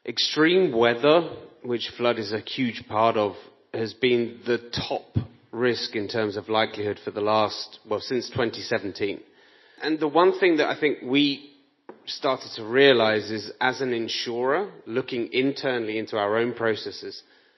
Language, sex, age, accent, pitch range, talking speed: English, male, 30-49, British, 110-140 Hz, 155 wpm